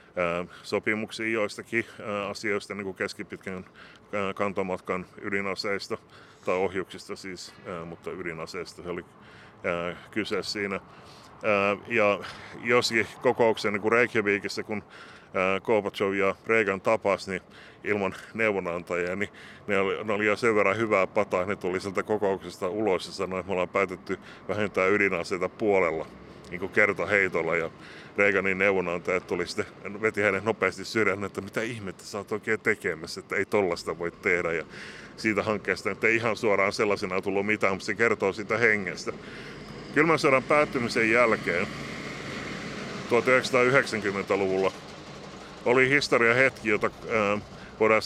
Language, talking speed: Finnish, 125 wpm